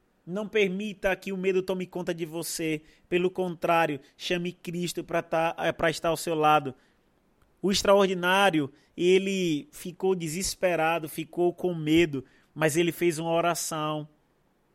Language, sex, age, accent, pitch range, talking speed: Portuguese, male, 20-39, Brazilian, 155-185 Hz, 125 wpm